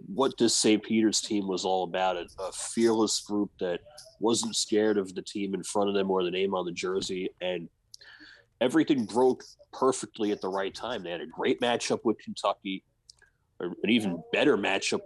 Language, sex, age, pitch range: English, male, 30-49, 95-110 Hz